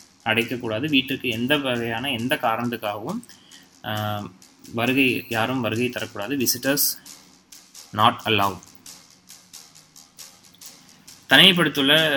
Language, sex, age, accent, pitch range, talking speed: Tamil, male, 20-39, native, 100-125 Hz, 70 wpm